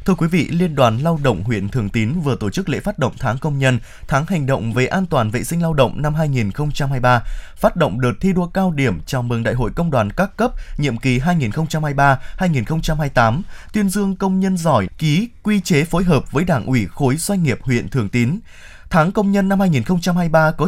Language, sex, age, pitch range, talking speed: Vietnamese, male, 20-39, 130-185 Hz, 215 wpm